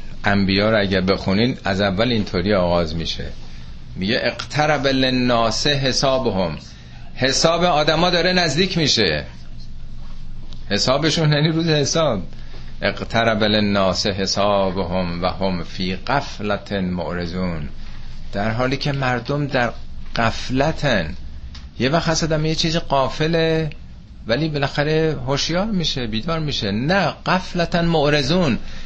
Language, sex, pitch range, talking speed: Persian, male, 85-140 Hz, 105 wpm